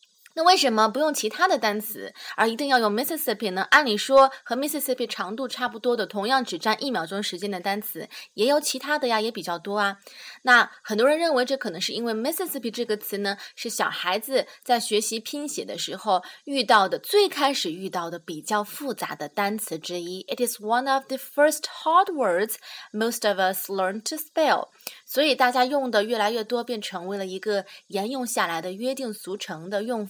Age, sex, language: 20-39, female, Chinese